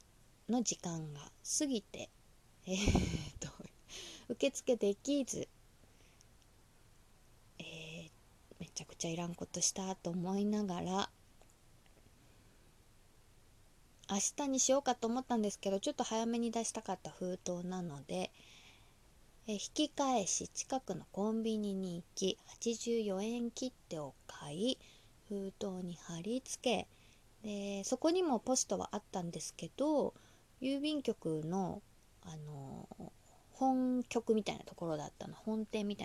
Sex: female